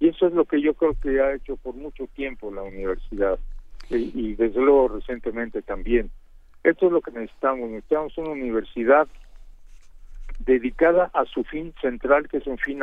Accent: Mexican